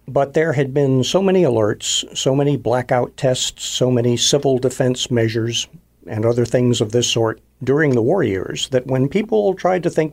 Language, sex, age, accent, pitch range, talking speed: English, male, 50-69, American, 115-140 Hz, 190 wpm